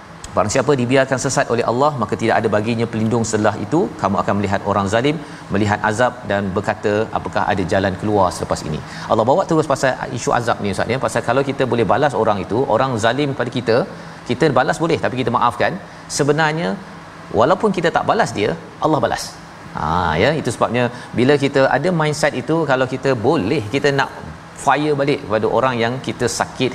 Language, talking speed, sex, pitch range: Malayalam, 185 wpm, male, 110-140 Hz